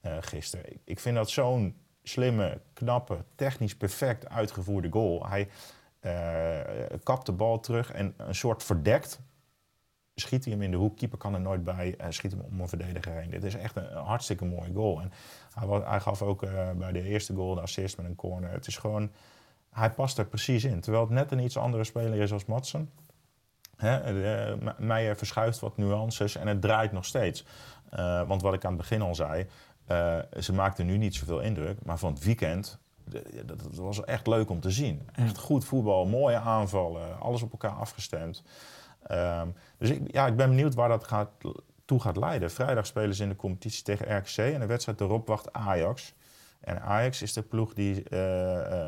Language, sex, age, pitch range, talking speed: Dutch, male, 30-49, 95-115 Hz, 200 wpm